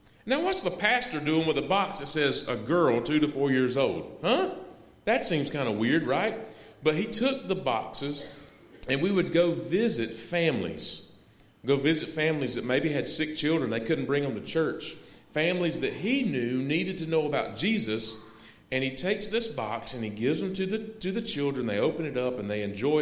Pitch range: 120-170 Hz